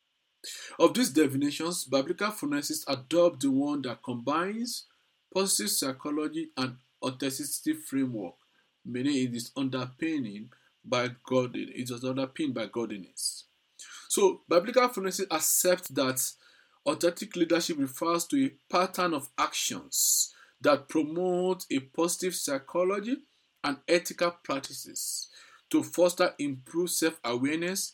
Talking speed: 100 wpm